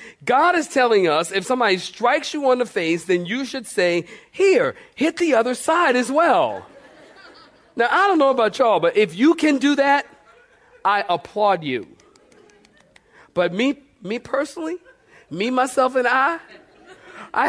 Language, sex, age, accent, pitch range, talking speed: English, male, 40-59, American, 210-285 Hz, 160 wpm